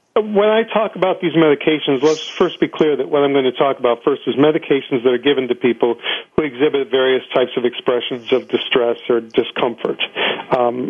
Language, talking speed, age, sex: English, 200 wpm, 50-69, male